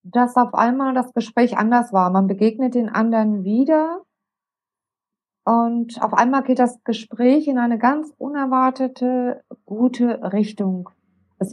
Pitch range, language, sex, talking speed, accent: 205-255 Hz, German, female, 130 wpm, German